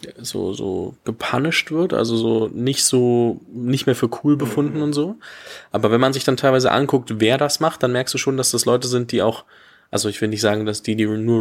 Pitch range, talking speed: 110-125 Hz, 230 wpm